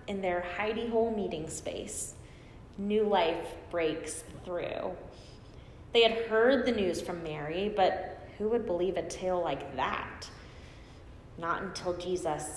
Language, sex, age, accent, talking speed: English, female, 20-39, American, 130 wpm